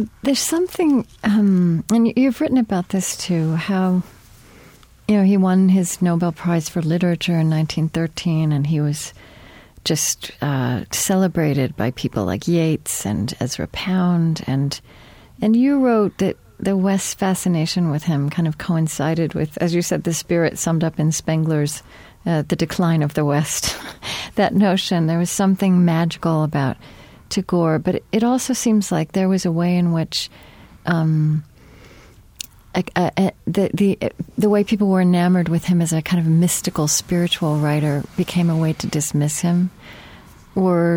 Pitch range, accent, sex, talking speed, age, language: 155-195 Hz, American, female, 155 wpm, 40-59, English